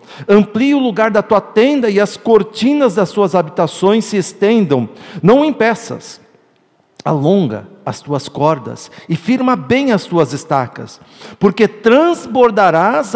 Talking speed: 130 wpm